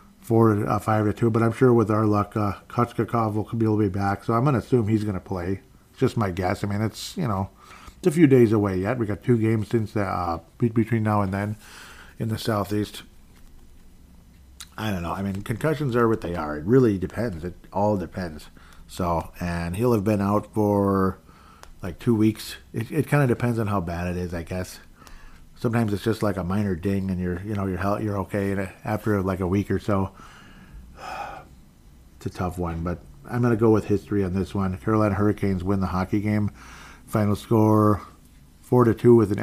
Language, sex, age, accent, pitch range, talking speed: English, male, 50-69, American, 95-115 Hz, 210 wpm